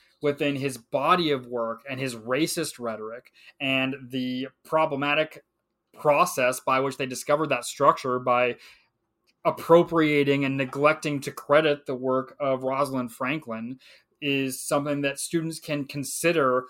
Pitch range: 130-160 Hz